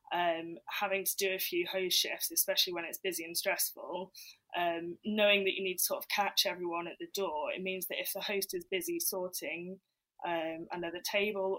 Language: English